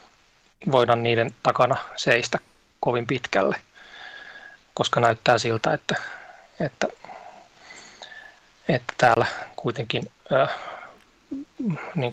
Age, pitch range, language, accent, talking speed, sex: 30-49, 125-165 Hz, Finnish, native, 80 wpm, male